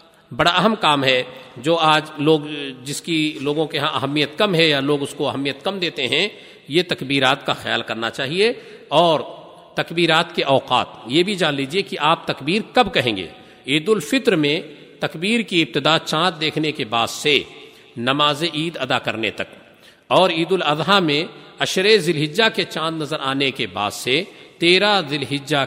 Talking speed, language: 175 wpm, Urdu